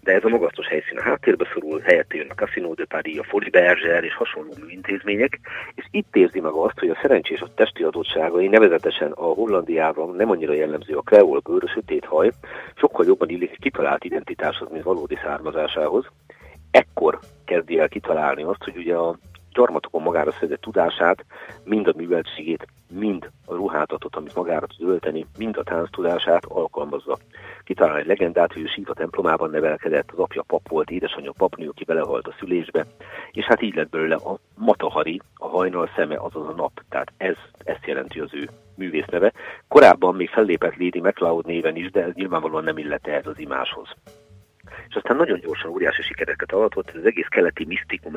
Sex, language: male, Hungarian